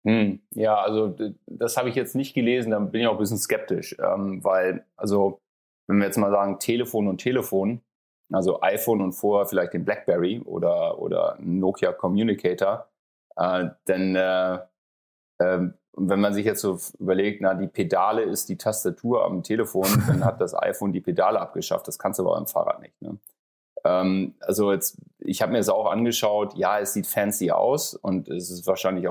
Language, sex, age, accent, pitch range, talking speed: German, male, 30-49, German, 95-110 Hz, 185 wpm